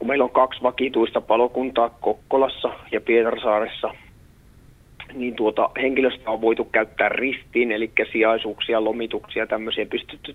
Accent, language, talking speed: native, Finnish, 130 wpm